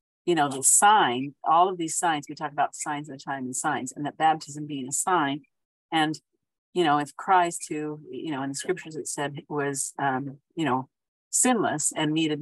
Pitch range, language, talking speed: 140-165 Hz, English, 210 wpm